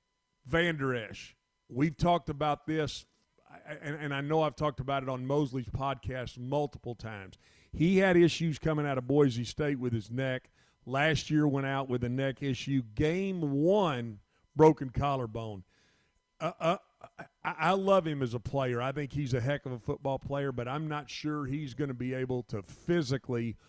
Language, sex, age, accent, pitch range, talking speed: English, male, 40-59, American, 125-150 Hz, 175 wpm